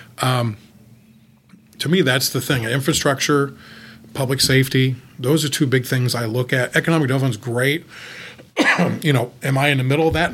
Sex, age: male, 40-59